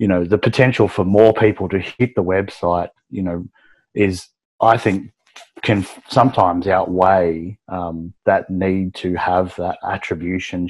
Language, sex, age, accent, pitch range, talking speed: English, male, 30-49, Australian, 90-105 Hz, 145 wpm